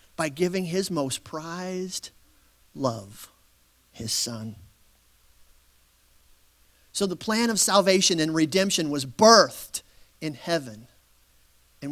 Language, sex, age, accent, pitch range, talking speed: English, male, 40-59, American, 155-230 Hz, 100 wpm